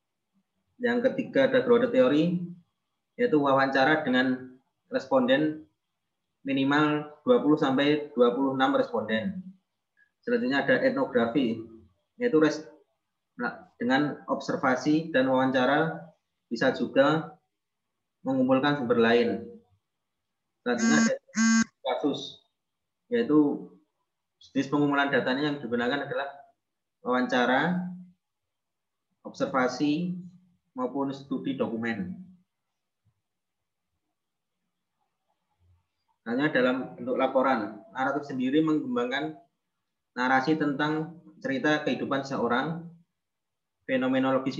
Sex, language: male, Indonesian